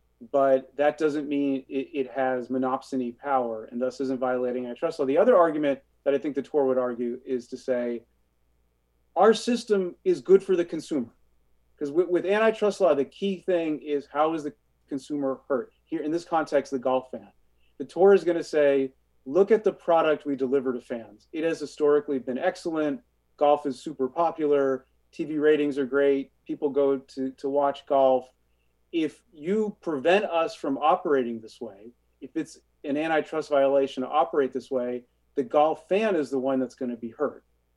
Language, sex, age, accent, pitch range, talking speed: English, male, 30-49, American, 130-155 Hz, 185 wpm